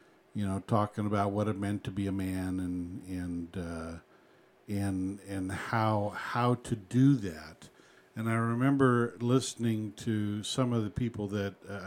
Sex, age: male, 60-79